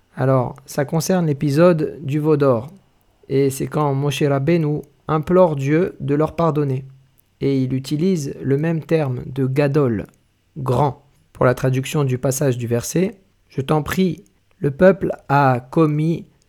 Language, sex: French, male